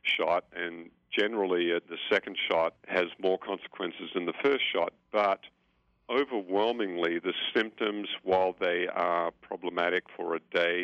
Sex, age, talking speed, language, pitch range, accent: male, 50-69, 135 wpm, English, 85-100 Hz, American